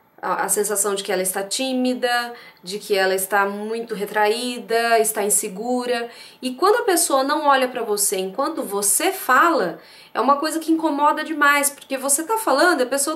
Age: 20-39